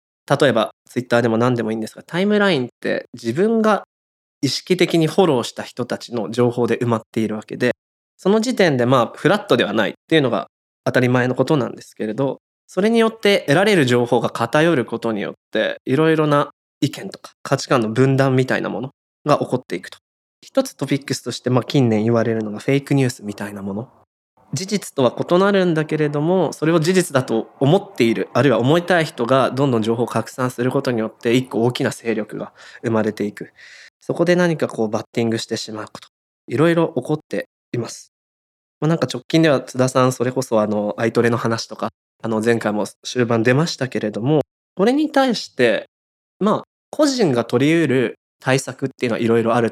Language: Japanese